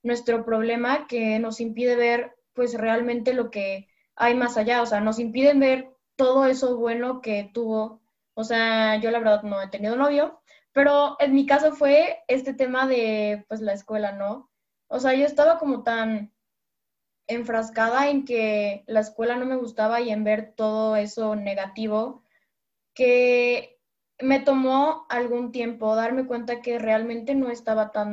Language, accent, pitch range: Spanish, Mexican, 215-260 Hz